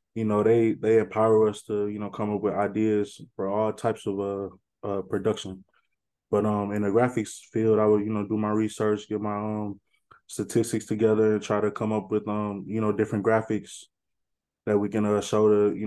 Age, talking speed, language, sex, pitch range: 20-39, 210 wpm, English, male, 100-110 Hz